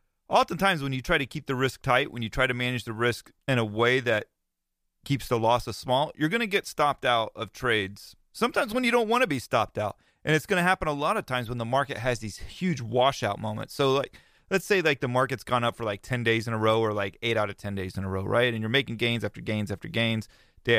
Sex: male